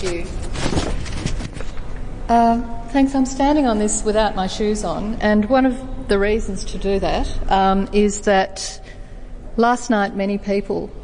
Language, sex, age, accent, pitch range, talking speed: English, female, 40-59, Australian, 185-225 Hz, 145 wpm